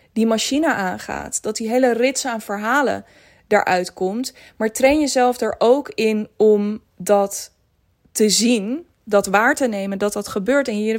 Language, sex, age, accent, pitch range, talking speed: Dutch, female, 20-39, Dutch, 200-245 Hz, 165 wpm